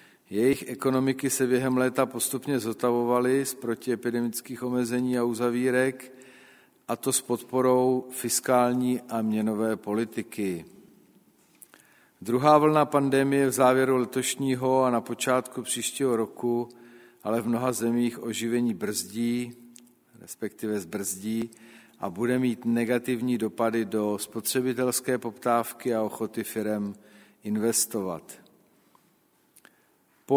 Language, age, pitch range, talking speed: Czech, 50-69, 115-130 Hz, 105 wpm